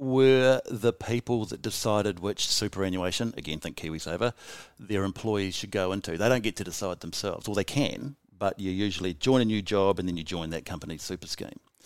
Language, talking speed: English, 195 wpm